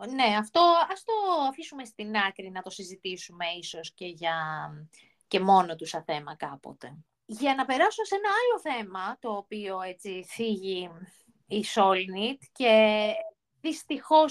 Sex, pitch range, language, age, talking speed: female, 195-265 Hz, Greek, 20-39, 145 wpm